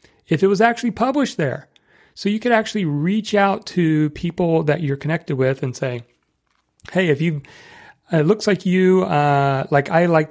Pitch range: 135-180 Hz